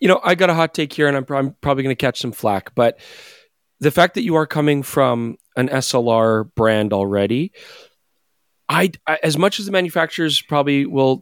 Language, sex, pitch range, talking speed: English, male, 120-150 Hz, 205 wpm